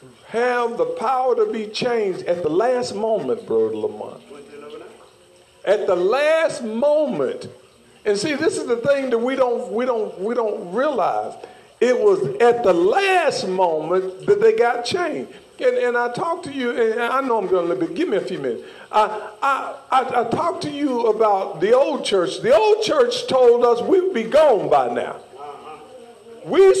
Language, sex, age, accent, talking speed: English, male, 50-69, American, 180 wpm